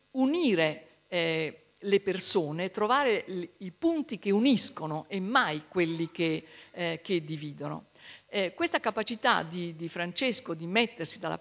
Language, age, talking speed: Italian, 50-69, 130 wpm